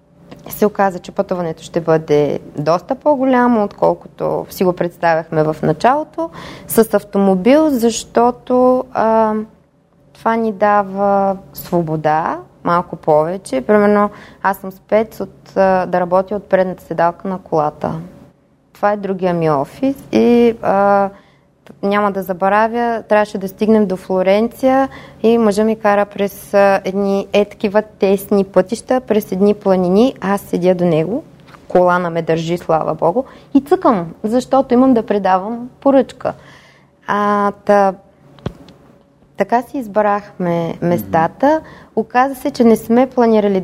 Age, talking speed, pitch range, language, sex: 20-39, 125 wpm, 175-220 Hz, Bulgarian, female